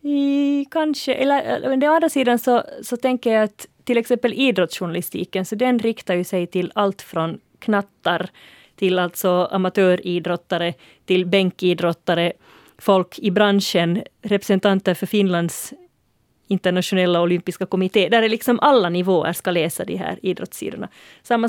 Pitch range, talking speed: 175-215 Hz, 135 wpm